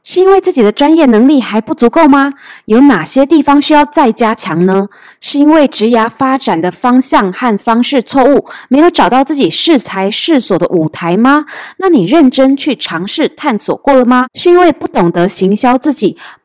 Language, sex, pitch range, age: Chinese, female, 205-295 Hz, 20-39